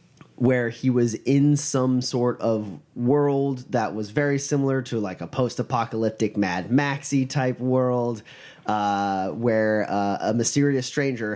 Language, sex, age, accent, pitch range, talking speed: English, male, 30-49, American, 105-135 Hz, 135 wpm